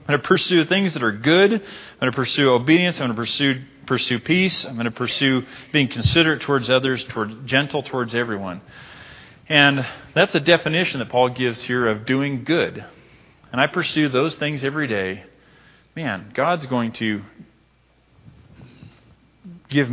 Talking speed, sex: 165 wpm, male